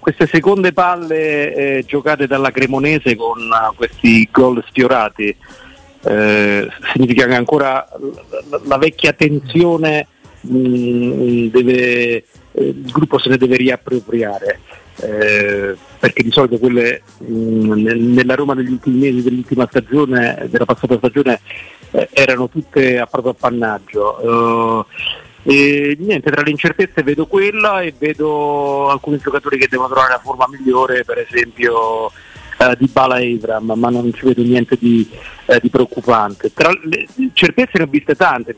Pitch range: 120-150 Hz